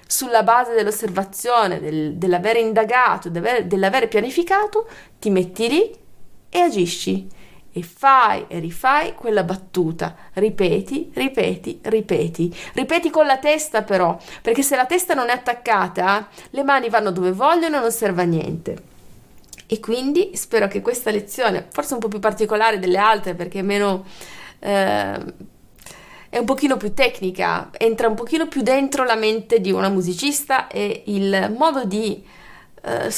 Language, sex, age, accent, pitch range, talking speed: Italian, female, 30-49, native, 195-270 Hz, 150 wpm